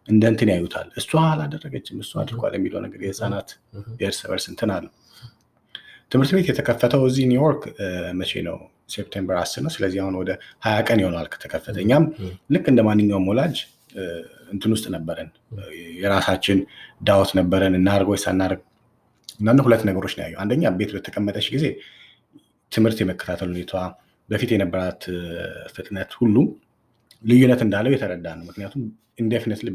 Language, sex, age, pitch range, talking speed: English, male, 30-49, 95-120 Hz, 85 wpm